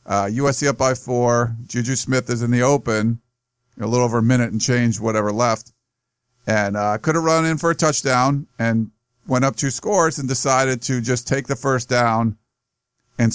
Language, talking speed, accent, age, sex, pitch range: English, 195 wpm, American, 50-69, male, 115-135 Hz